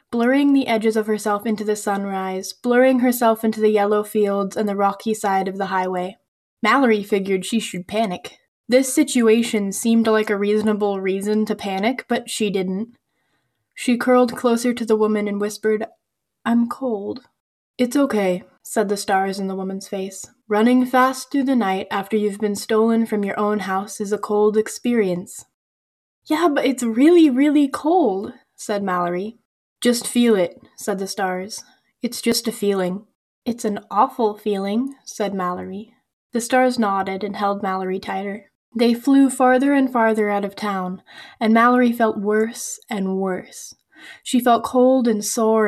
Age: 10-29